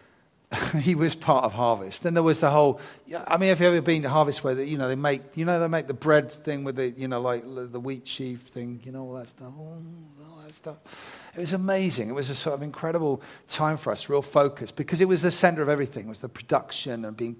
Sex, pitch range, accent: male, 120-155 Hz, British